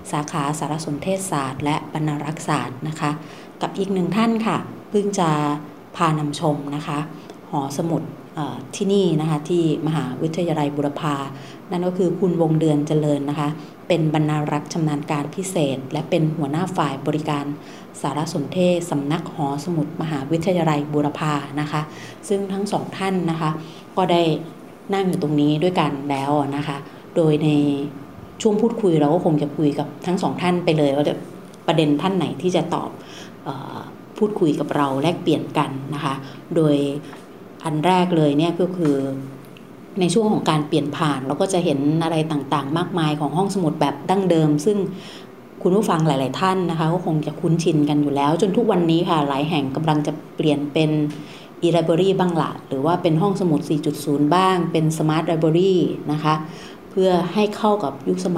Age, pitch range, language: 30-49, 145-180 Hz, Thai